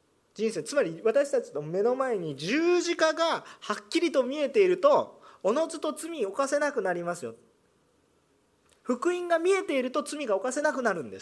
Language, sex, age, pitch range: Japanese, male, 40-59, 235-330 Hz